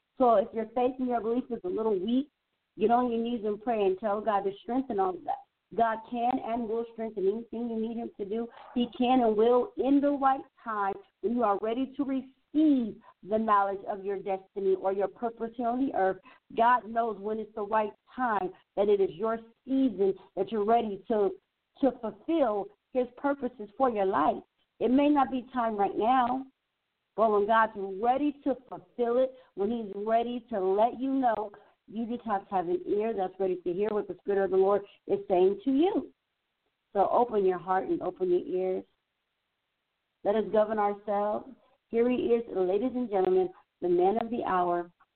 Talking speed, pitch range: 200 wpm, 195-250 Hz